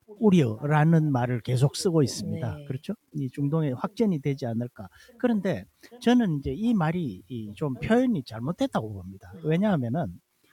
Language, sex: Korean, male